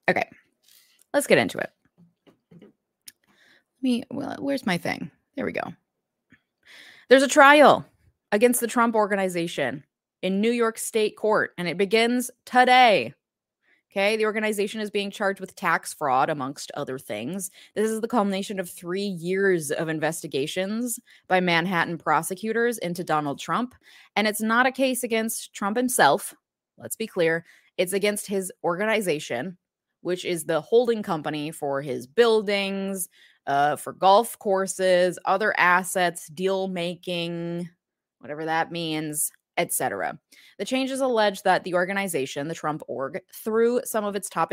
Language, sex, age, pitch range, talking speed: English, female, 20-39, 160-220 Hz, 140 wpm